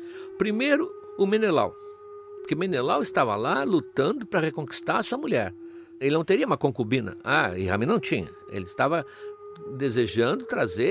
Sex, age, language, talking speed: male, 60-79, Portuguese, 150 wpm